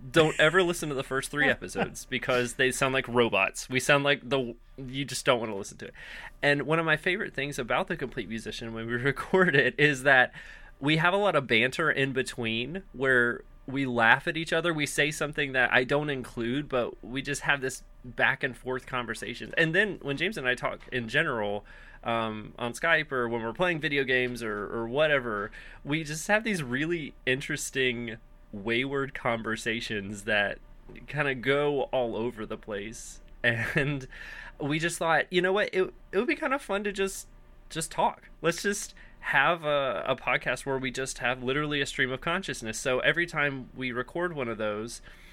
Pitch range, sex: 120-150 Hz, male